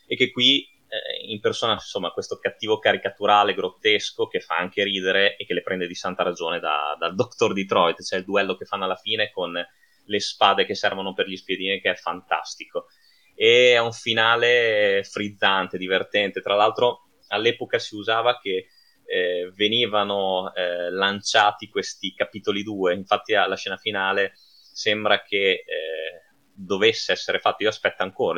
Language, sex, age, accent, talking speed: Italian, male, 20-39, native, 160 wpm